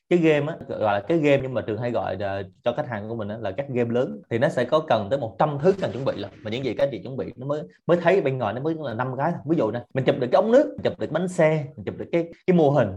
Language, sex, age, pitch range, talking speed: Vietnamese, male, 20-39, 115-155 Hz, 340 wpm